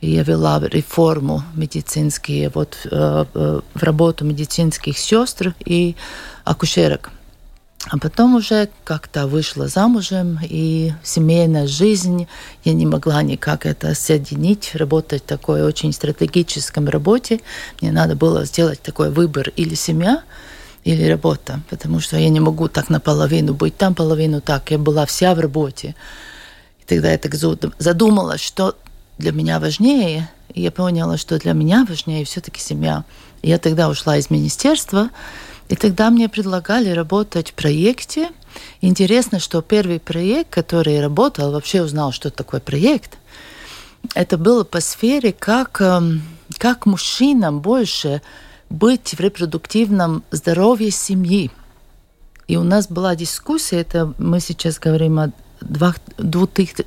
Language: Russian